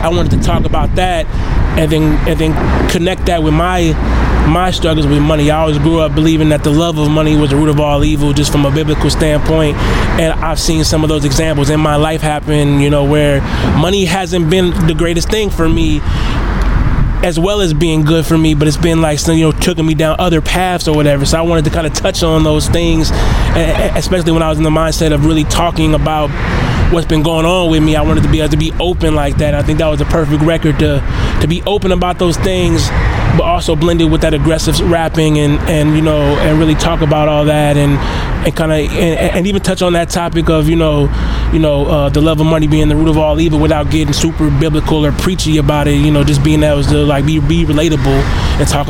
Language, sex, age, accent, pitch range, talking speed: English, male, 20-39, American, 150-165 Hz, 240 wpm